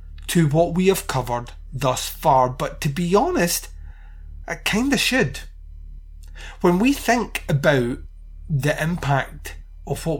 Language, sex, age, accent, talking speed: English, male, 30-49, British, 135 wpm